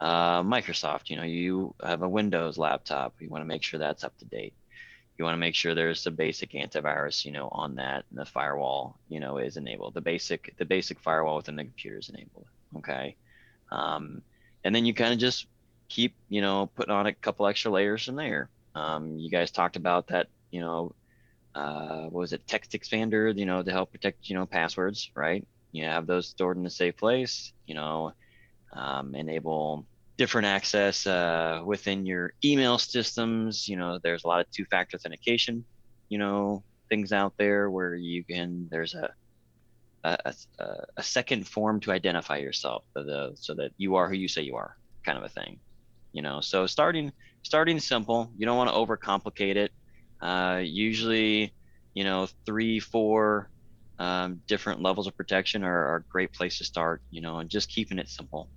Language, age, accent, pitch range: English, 20-39, American, 85-110 Hz